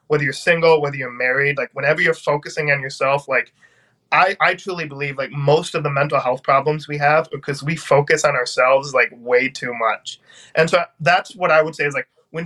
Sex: male